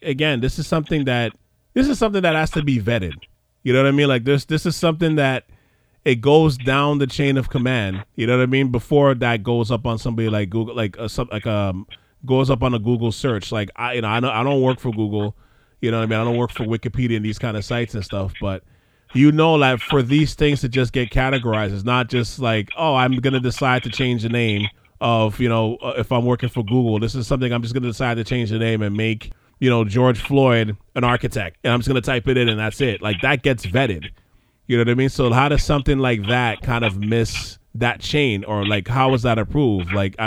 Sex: male